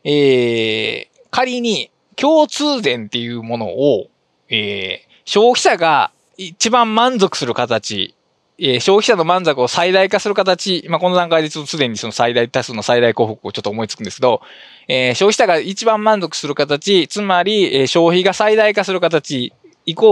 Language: Japanese